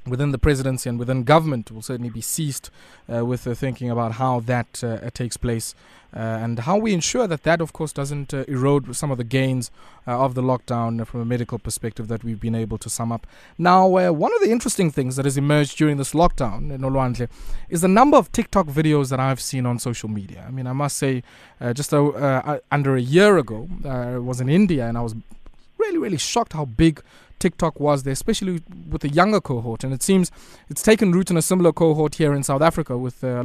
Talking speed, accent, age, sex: 225 wpm, South African, 20-39, male